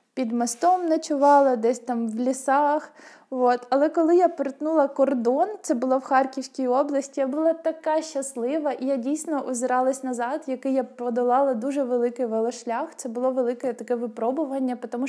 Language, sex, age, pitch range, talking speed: Ukrainian, female, 20-39, 245-275 Hz, 155 wpm